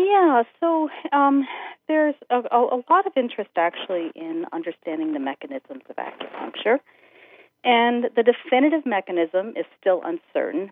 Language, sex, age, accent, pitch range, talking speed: English, female, 40-59, American, 150-240 Hz, 130 wpm